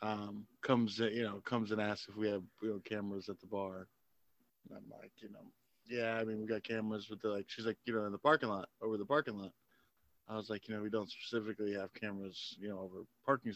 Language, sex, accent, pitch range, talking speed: English, male, American, 105-120 Hz, 245 wpm